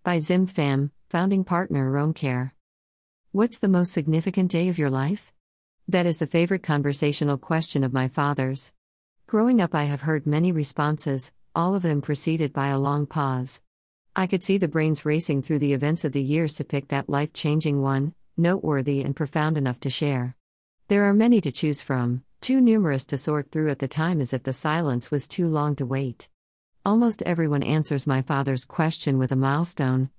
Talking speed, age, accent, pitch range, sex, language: 185 wpm, 50-69, American, 135-170 Hz, female, English